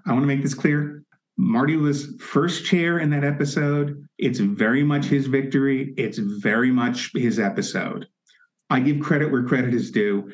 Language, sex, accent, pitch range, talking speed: English, male, American, 120-205 Hz, 175 wpm